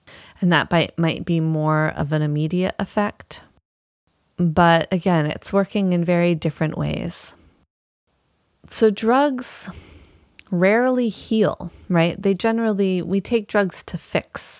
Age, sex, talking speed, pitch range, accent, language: 30-49, female, 120 wpm, 150-195 Hz, American, English